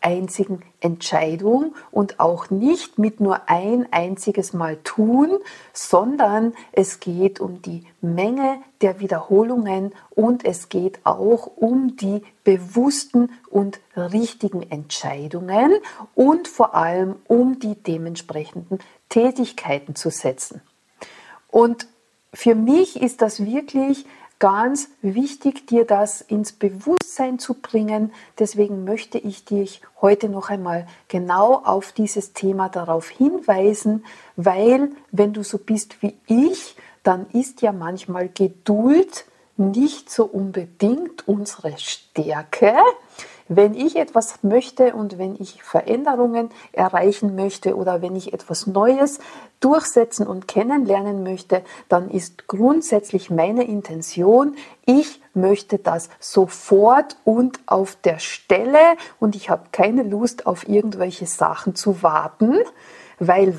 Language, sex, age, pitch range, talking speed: German, female, 50-69, 185-245 Hz, 115 wpm